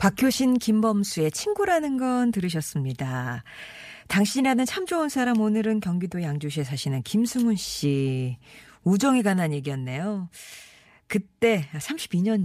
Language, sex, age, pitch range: Korean, female, 40-59, 150-220 Hz